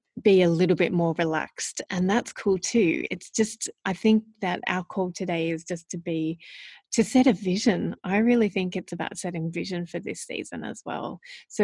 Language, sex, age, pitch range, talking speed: English, female, 30-49, 170-205 Hz, 200 wpm